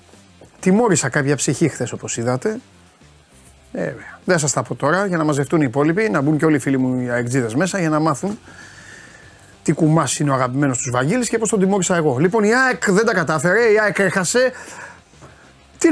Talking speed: 195 wpm